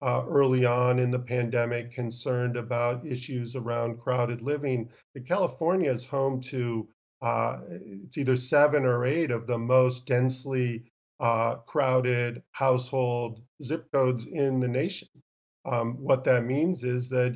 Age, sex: 50-69, male